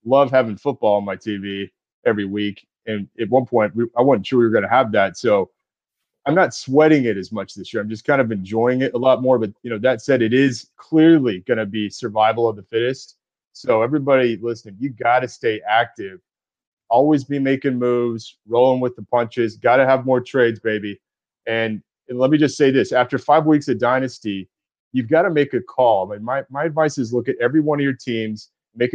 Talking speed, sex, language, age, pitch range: 220 wpm, male, English, 30-49, 110-135 Hz